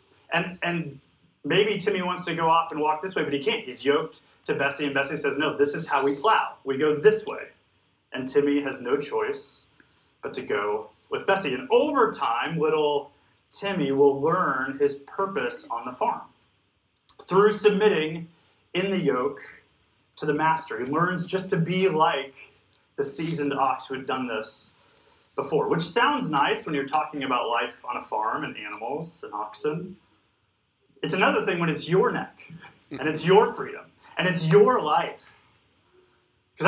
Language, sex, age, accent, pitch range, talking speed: English, male, 30-49, American, 145-200 Hz, 175 wpm